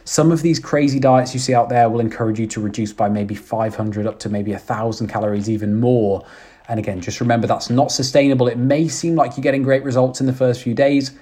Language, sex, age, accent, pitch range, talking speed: English, male, 20-39, British, 110-140 Hz, 235 wpm